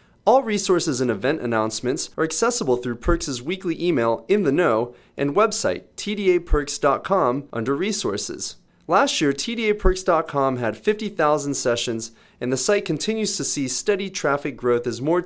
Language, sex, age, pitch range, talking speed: English, male, 30-49, 120-185 Hz, 140 wpm